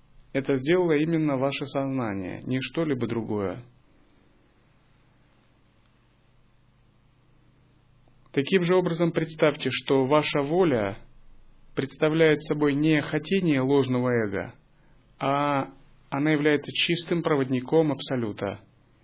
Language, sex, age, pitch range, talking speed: Russian, male, 30-49, 125-150 Hz, 85 wpm